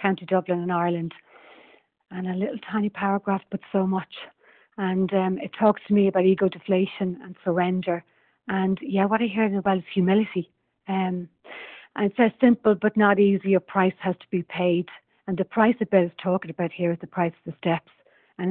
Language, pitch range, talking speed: English, 180-200 Hz, 200 wpm